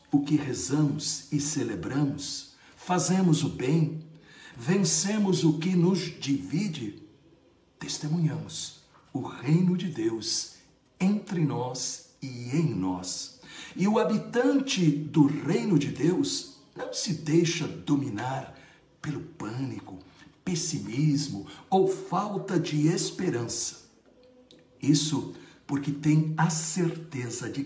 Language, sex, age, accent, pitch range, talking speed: Portuguese, male, 60-79, Brazilian, 145-190 Hz, 100 wpm